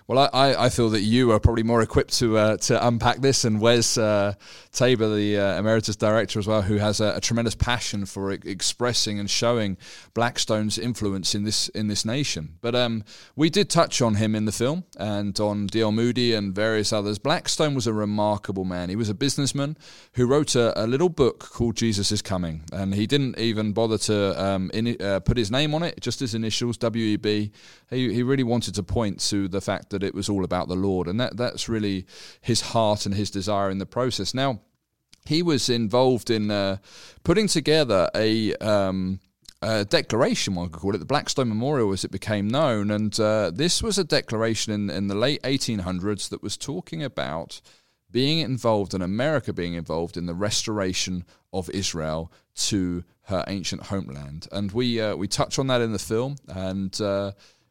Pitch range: 100-120 Hz